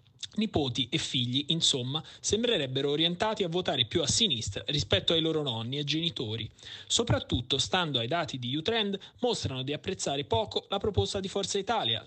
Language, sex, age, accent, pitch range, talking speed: Italian, male, 30-49, native, 125-180 Hz, 160 wpm